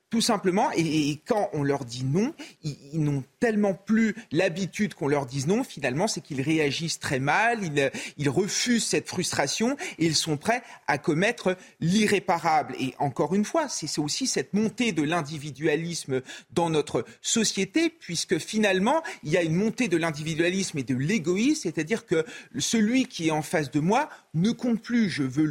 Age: 40-59